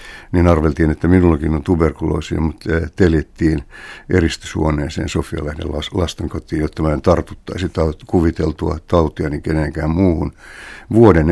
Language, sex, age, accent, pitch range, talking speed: Finnish, male, 60-79, native, 75-90 Hz, 110 wpm